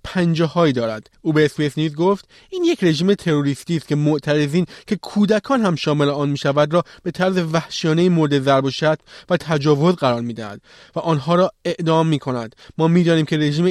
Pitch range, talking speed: 145-175 Hz, 195 wpm